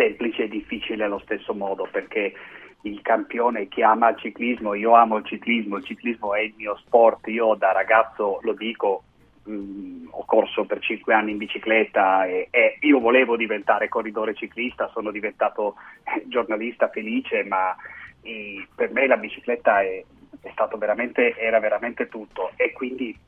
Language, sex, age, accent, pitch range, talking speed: Italian, male, 30-49, native, 105-130 Hz, 155 wpm